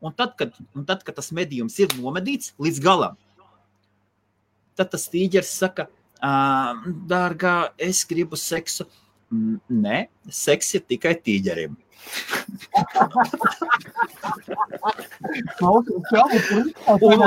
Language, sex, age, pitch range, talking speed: English, male, 30-49, 185-255 Hz, 95 wpm